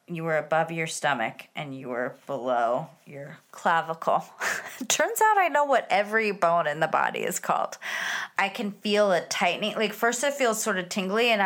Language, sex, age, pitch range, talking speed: English, female, 30-49, 180-270 Hz, 190 wpm